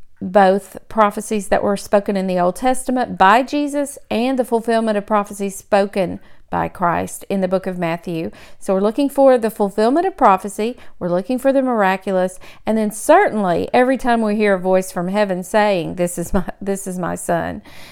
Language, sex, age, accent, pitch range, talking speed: English, female, 50-69, American, 200-270 Hz, 190 wpm